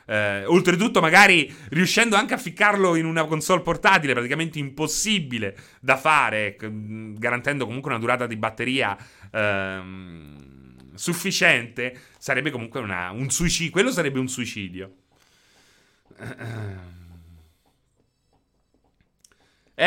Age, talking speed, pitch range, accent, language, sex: 30-49, 105 wpm, 120-180 Hz, native, Italian, male